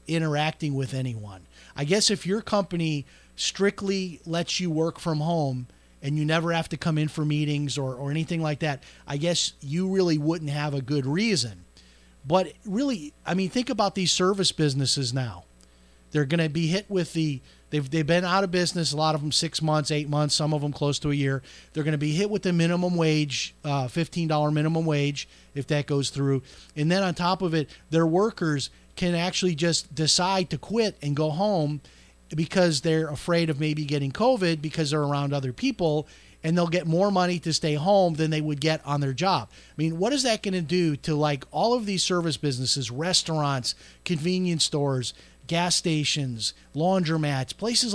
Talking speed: 195 wpm